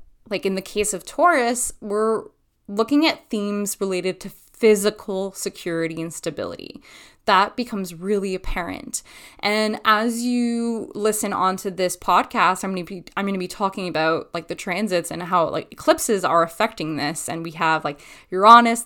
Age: 20-39